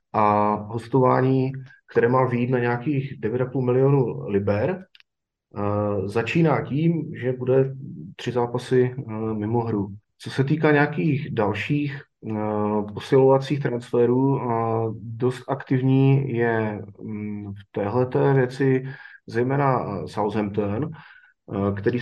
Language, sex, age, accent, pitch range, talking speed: Czech, male, 30-49, native, 115-140 Hz, 95 wpm